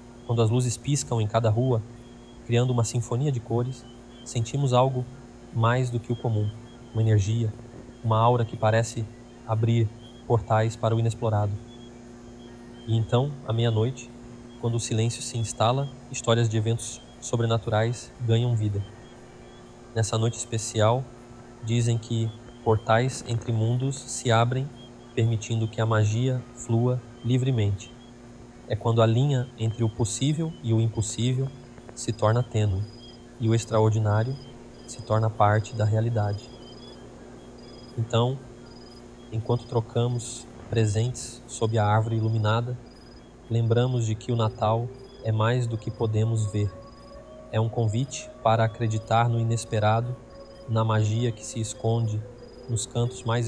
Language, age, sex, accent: Portuguese, 20-39, male, Brazilian